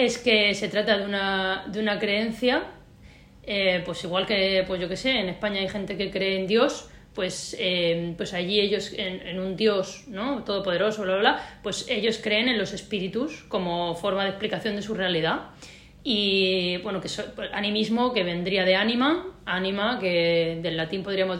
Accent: Spanish